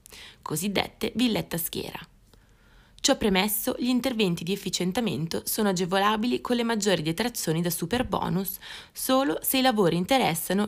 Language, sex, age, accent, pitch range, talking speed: Italian, female, 20-39, native, 170-230 Hz, 135 wpm